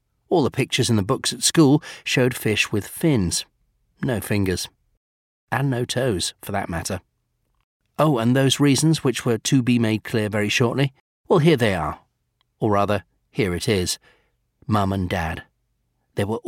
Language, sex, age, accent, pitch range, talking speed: English, male, 40-59, British, 100-135 Hz, 170 wpm